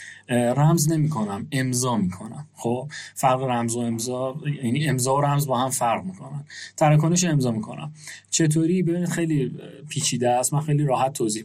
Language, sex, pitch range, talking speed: Persian, male, 115-150 Hz, 155 wpm